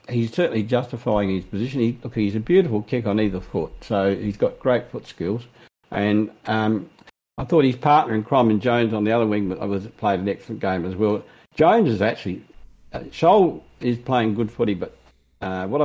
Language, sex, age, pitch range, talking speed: English, male, 60-79, 100-120 Hz, 200 wpm